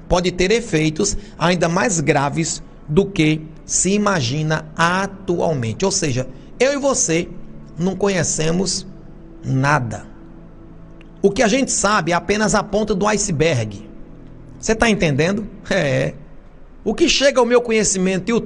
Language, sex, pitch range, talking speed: Portuguese, male, 140-215 Hz, 135 wpm